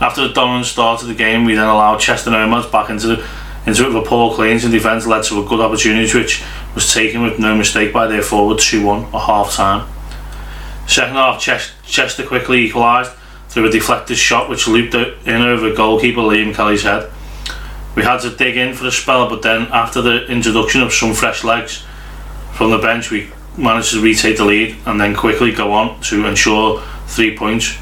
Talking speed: 205 wpm